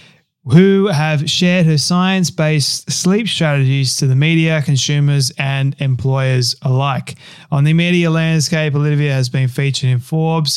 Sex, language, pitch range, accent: male, English, 135-160 Hz, Australian